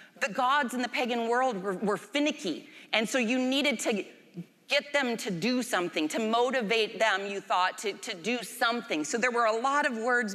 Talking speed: 205 wpm